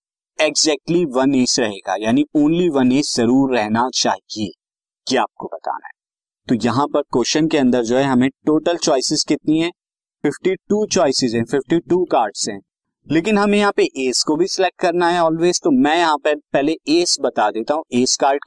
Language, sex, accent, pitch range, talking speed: Hindi, male, native, 135-185 Hz, 180 wpm